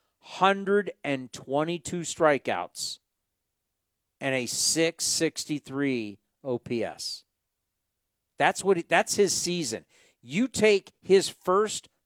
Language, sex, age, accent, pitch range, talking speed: English, male, 50-69, American, 140-205 Hz, 80 wpm